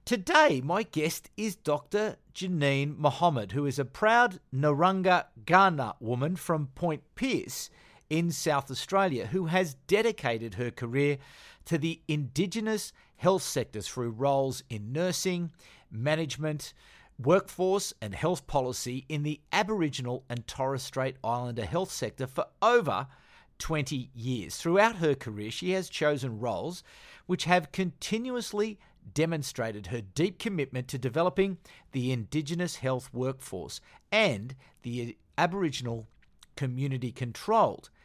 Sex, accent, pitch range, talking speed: male, Australian, 125-180 Hz, 120 wpm